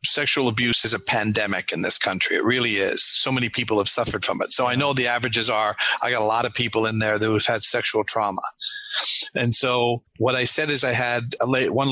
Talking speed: 230 wpm